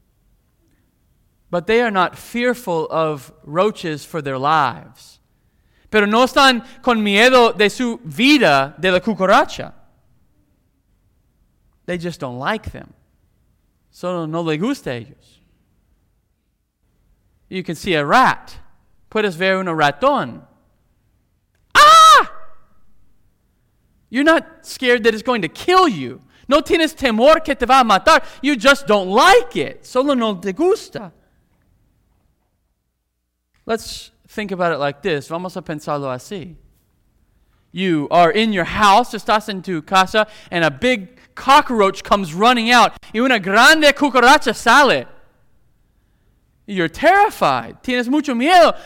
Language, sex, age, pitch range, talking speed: English, male, 20-39, 160-255 Hz, 130 wpm